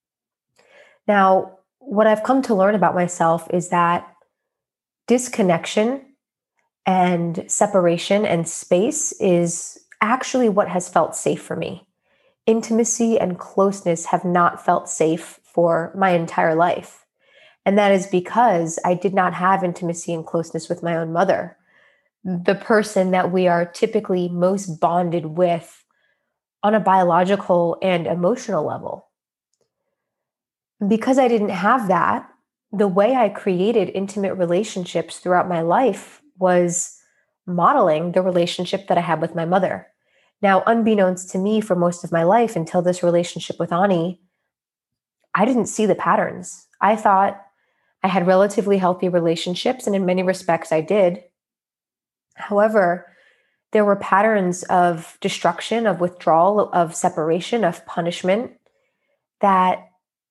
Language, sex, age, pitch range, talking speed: English, female, 20-39, 175-210 Hz, 130 wpm